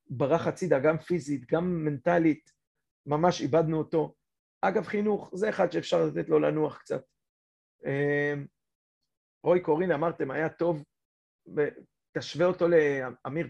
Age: 40-59